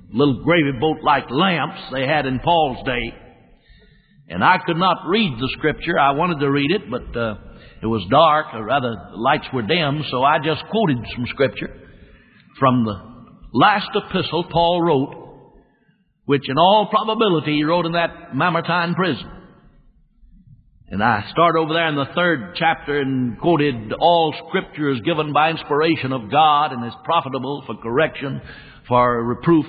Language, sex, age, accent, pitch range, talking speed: English, male, 60-79, American, 135-170 Hz, 160 wpm